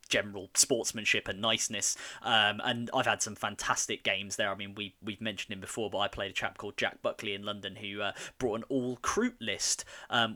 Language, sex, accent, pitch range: English, male, British, 100-125 Hz